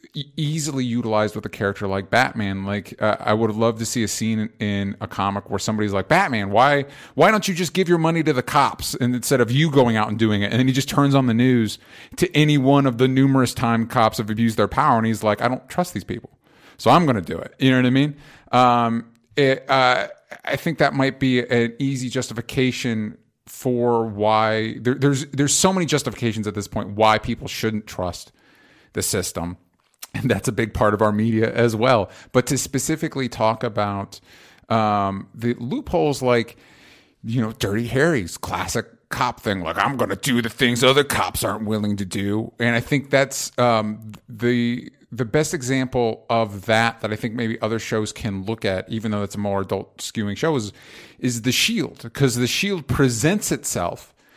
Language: English